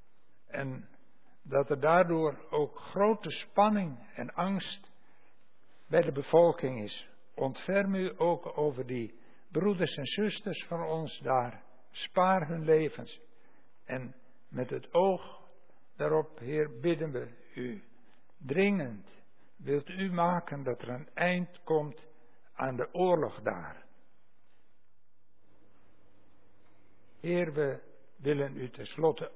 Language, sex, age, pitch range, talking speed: Dutch, male, 60-79, 105-170 Hz, 110 wpm